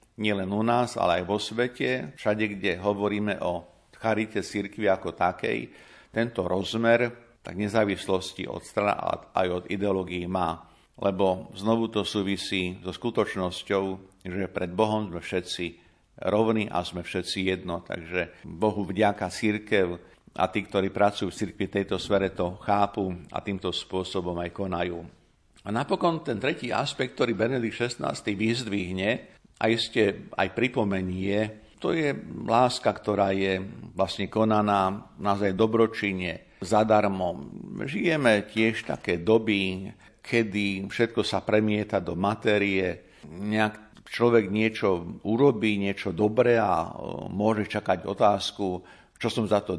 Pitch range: 95-110 Hz